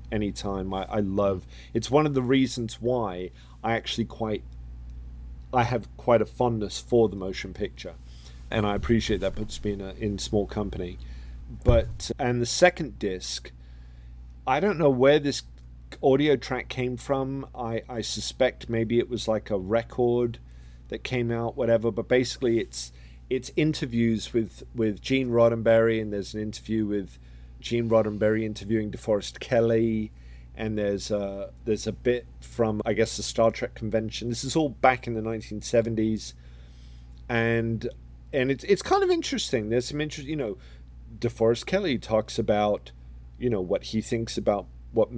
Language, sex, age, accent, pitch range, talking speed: English, male, 40-59, British, 90-120 Hz, 160 wpm